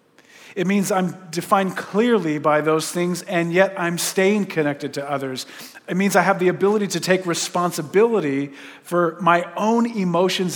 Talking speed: 160 wpm